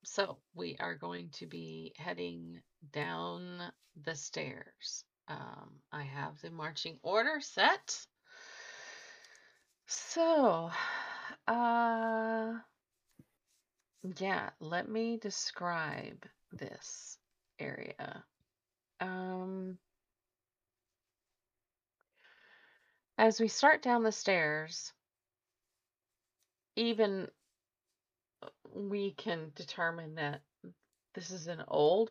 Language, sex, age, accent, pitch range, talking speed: English, female, 30-49, American, 145-225 Hz, 75 wpm